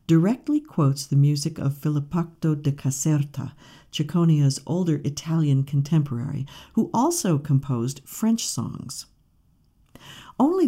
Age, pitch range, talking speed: 50-69, 145-200 Hz, 100 wpm